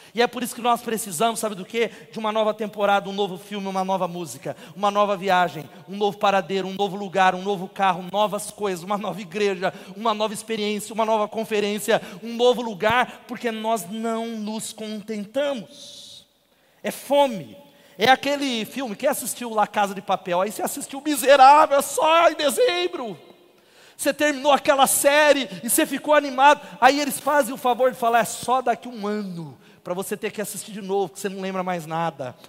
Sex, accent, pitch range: male, Brazilian, 200-240 Hz